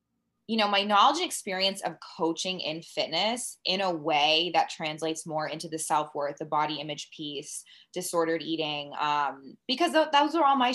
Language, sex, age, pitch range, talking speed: English, female, 20-39, 155-195 Hz, 175 wpm